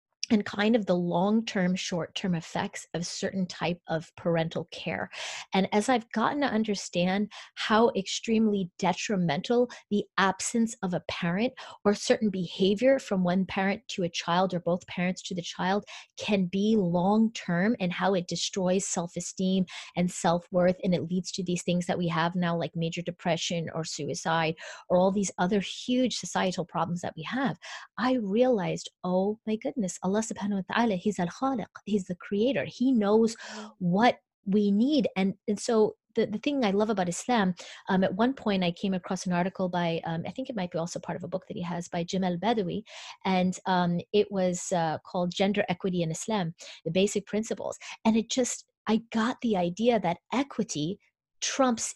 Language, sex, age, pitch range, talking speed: English, female, 30-49, 180-225 Hz, 175 wpm